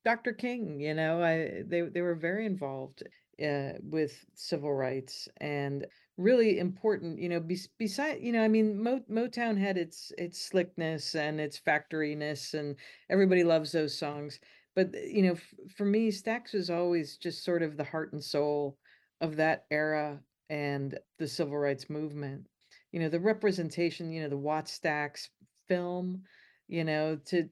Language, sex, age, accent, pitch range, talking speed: English, female, 50-69, American, 155-200 Hz, 165 wpm